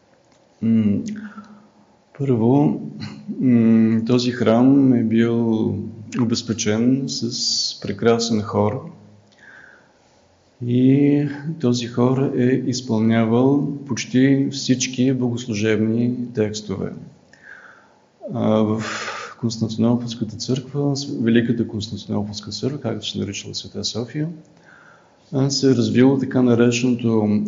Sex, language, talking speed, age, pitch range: male, Bulgarian, 75 wpm, 40-59, 110-130 Hz